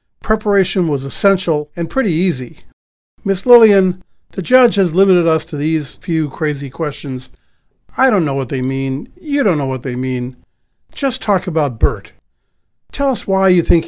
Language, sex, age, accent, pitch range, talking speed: English, male, 50-69, American, 150-185 Hz, 170 wpm